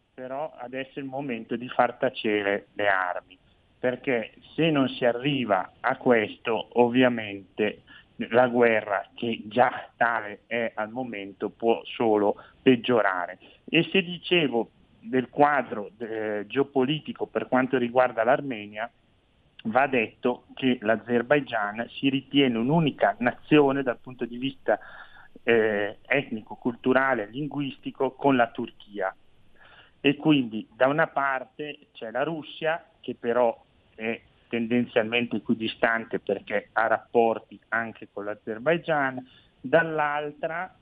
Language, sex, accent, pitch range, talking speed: Italian, male, native, 115-135 Hz, 115 wpm